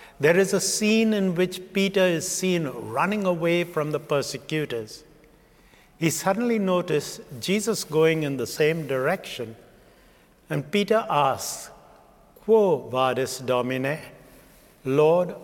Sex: male